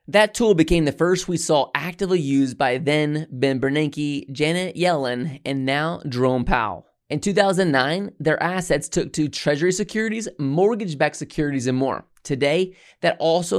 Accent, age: American, 20-39